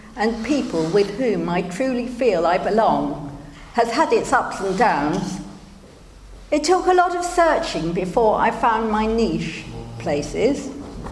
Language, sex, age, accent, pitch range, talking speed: English, female, 50-69, British, 195-280 Hz, 145 wpm